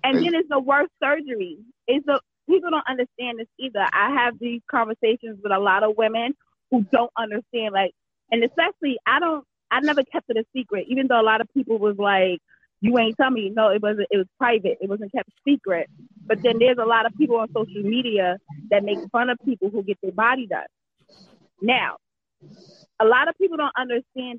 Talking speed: 210 wpm